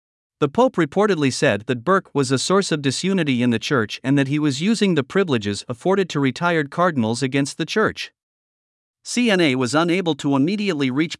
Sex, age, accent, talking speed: male, 50-69, American, 180 wpm